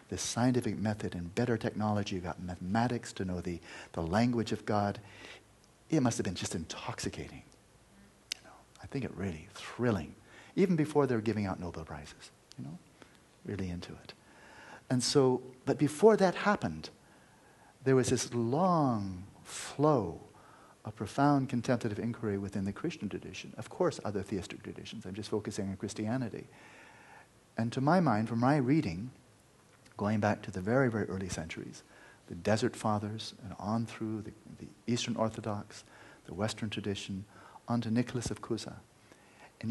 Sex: male